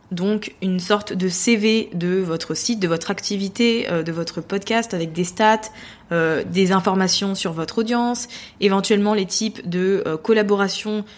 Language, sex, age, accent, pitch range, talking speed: French, female, 20-39, French, 180-220 Hz, 160 wpm